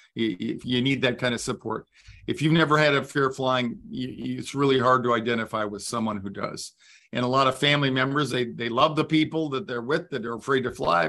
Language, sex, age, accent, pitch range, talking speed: English, male, 50-69, American, 110-135 Hz, 240 wpm